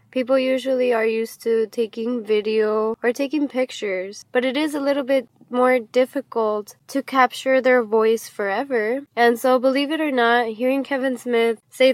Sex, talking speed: female, 165 wpm